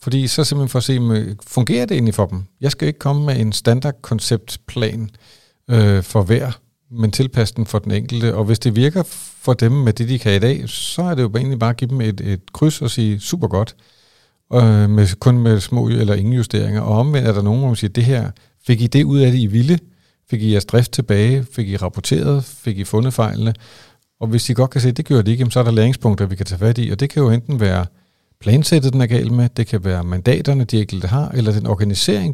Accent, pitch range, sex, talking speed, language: native, 105-130 Hz, male, 245 wpm, Danish